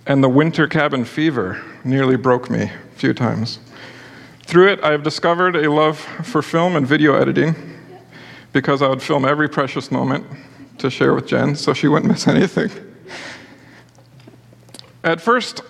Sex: male